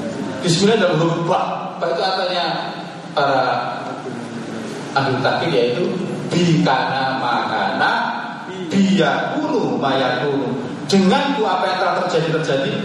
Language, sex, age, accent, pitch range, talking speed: Indonesian, male, 30-49, native, 140-180 Hz, 100 wpm